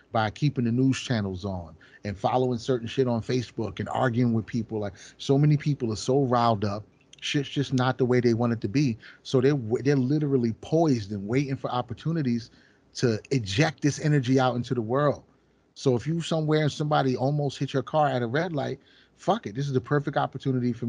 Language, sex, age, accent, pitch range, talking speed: English, male, 30-49, American, 115-135 Hz, 210 wpm